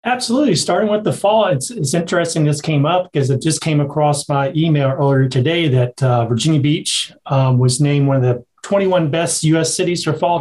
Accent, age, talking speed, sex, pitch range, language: American, 40-59, 210 wpm, male, 145-180 Hz, English